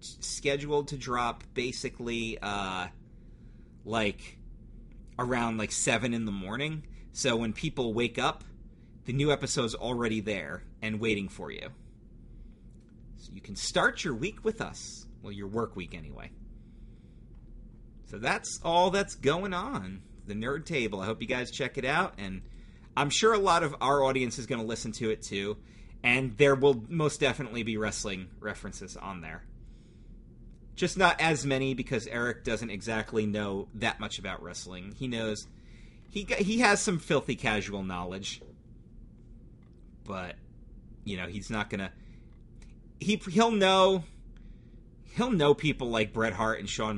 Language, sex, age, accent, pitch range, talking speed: English, male, 30-49, American, 105-140 Hz, 155 wpm